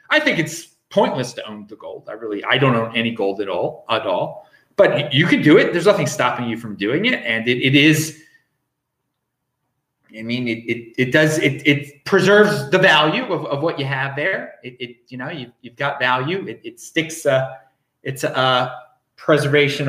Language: English